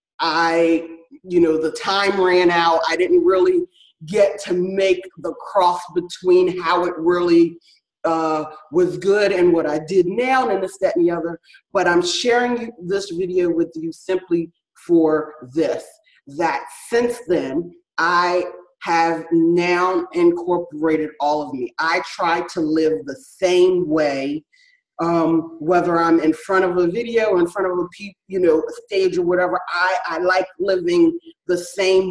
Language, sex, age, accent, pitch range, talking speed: English, female, 30-49, American, 170-230 Hz, 165 wpm